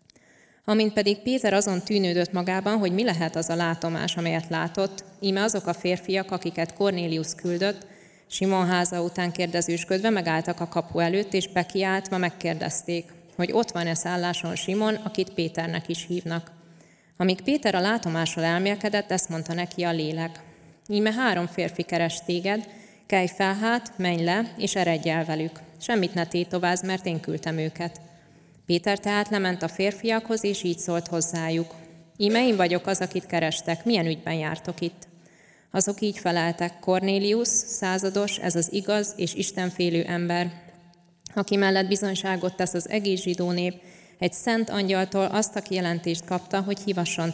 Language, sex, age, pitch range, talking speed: Hungarian, female, 20-39, 170-200 Hz, 150 wpm